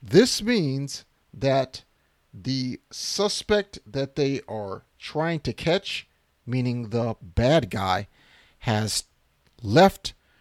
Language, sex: English, male